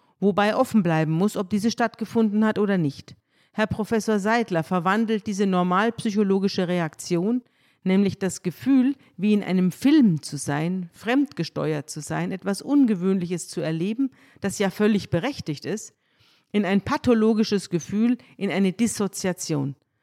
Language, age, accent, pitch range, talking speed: German, 50-69, German, 165-210 Hz, 135 wpm